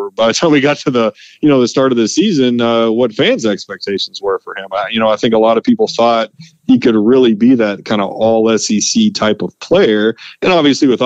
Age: 30-49